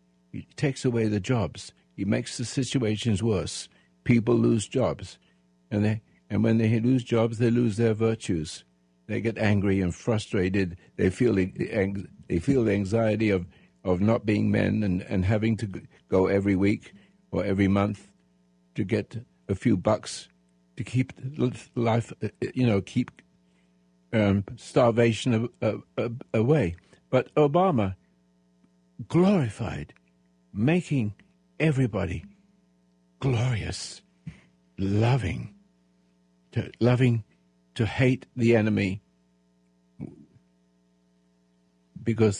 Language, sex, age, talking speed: English, male, 60-79, 110 wpm